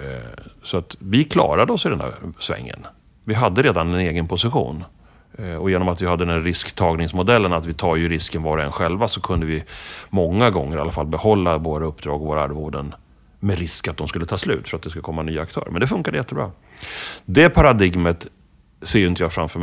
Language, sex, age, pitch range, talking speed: Swedish, male, 30-49, 80-105 Hz, 215 wpm